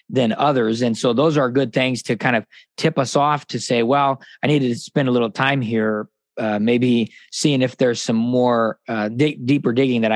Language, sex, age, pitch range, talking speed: English, male, 20-39, 115-145 Hz, 220 wpm